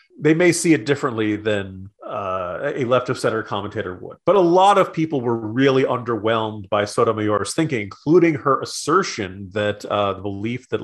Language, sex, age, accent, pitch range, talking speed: English, male, 30-49, American, 110-145 Hz, 165 wpm